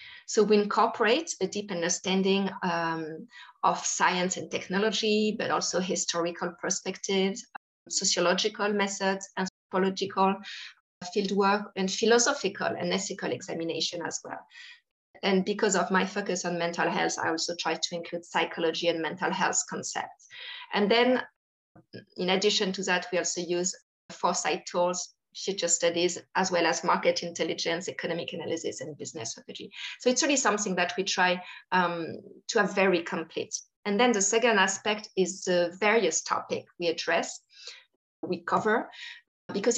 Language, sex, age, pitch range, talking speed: English, female, 30-49, 175-205 Hz, 140 wpm